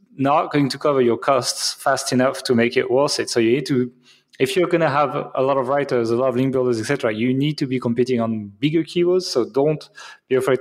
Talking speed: 255 wpm